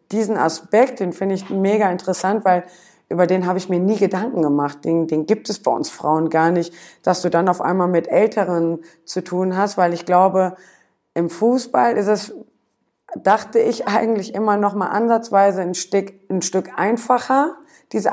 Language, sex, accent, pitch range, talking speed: German, female, German, 180-230 Hz, 180 wpm